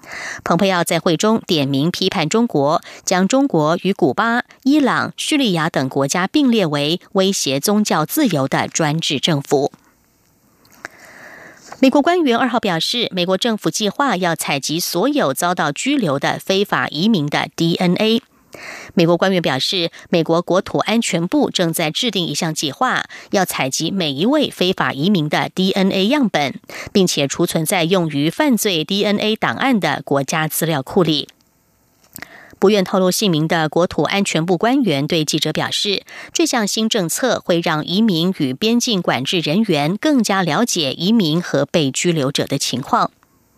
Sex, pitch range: female, 160-215 Hz